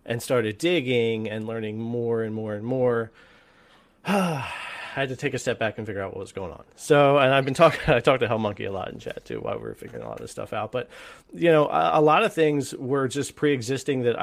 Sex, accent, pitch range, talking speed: male, American, 105-125 Hz, 255 wpm